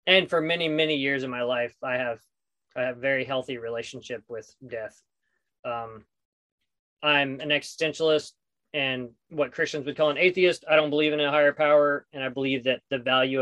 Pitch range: 125-155 Hz